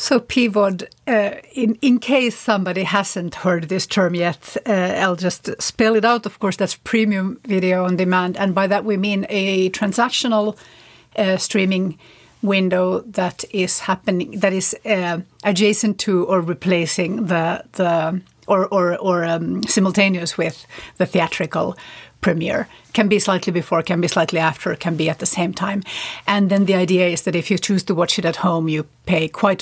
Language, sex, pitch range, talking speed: English, female, 175-210 Hz, 175 wpm